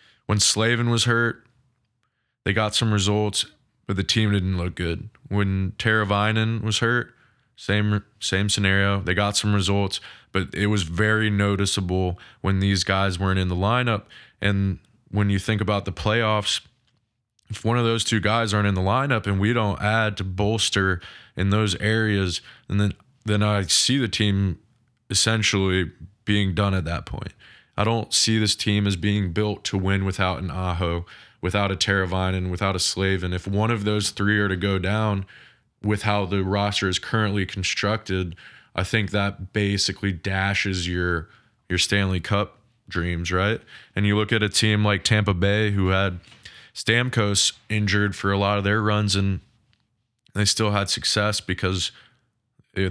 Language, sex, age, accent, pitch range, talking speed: English, male, 20-39, American, 95-110 Hz, 170 wpm